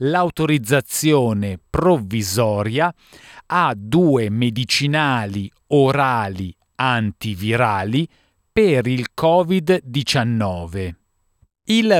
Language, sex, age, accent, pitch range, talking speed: Italian, male, 40-59, native, 110-160 Hz, 55 wpm